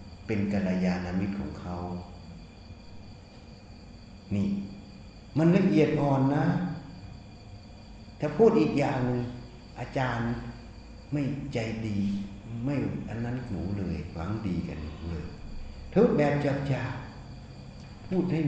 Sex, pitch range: male, 95-130 Hz